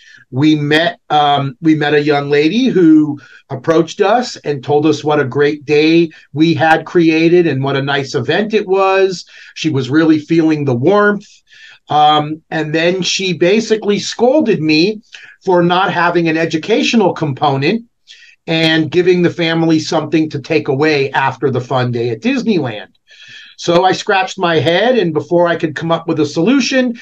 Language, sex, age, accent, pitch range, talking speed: English, male, 40-59, American, 150-180 Hz, 165 wpm